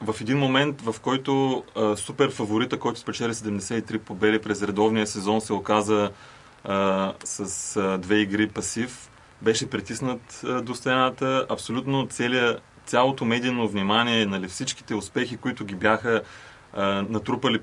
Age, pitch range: 30-49, 105-125 Hz